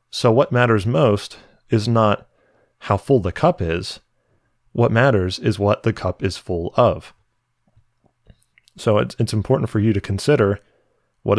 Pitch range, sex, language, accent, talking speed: 100-120 Hz, male, English, American, 155 wpm